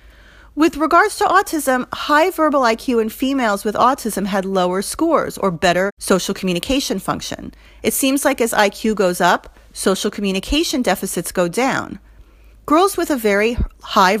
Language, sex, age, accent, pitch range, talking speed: English, female, 40-59, American, 190-275 Hz, 150 wpm